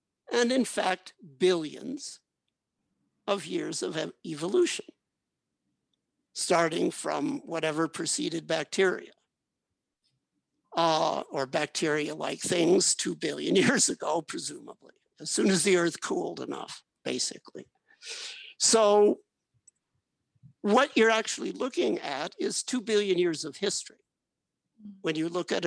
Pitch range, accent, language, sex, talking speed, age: 170-255 Hz, American, English, male, 110 wpm, 60-79